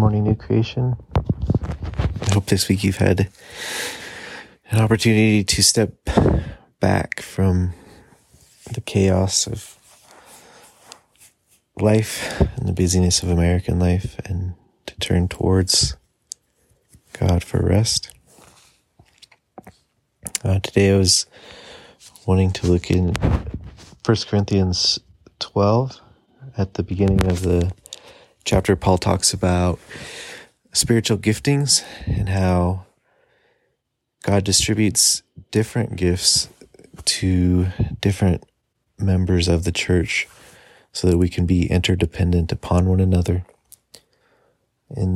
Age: 30-49